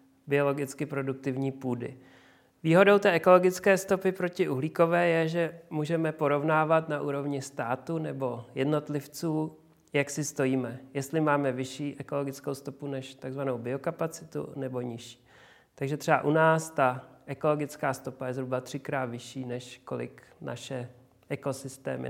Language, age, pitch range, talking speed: Czech, 40-59, 125-150 Hz, 125 wpm